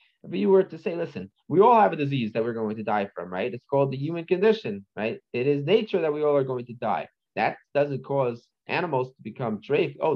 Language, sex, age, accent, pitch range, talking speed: English, male, 30-49, American, 120-185 Hz, 250 wpm